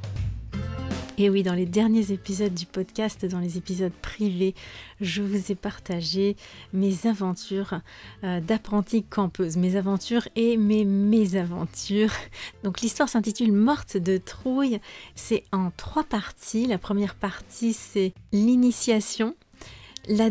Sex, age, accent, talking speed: female, 30-49, French, 120 wpm